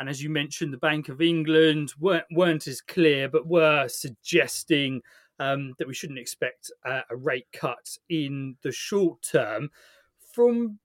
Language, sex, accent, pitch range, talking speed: English, male, British, 145-170 Hz, 160 wpm